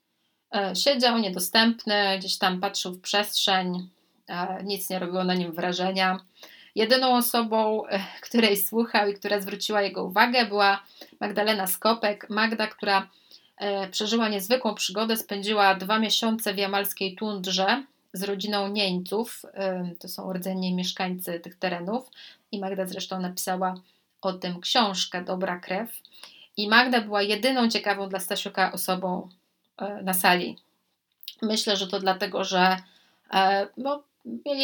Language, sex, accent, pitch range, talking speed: Polish, female, native, 185-220 Hz, 120 wpm